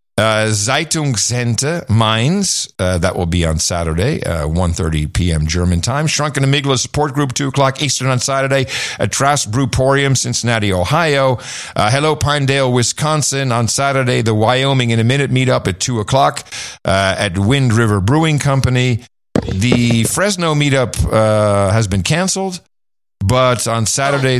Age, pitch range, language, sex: 50-69, 105-135 Hz, English, male